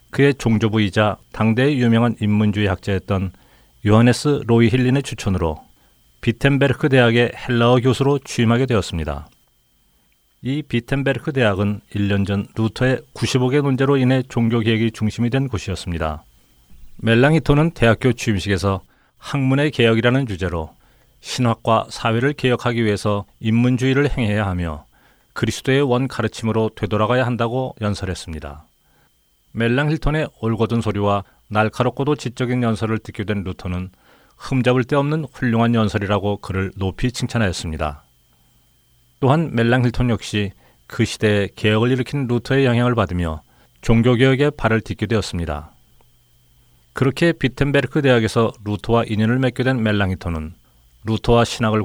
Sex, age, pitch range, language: male, 40-59, 100-125 Hz, Korean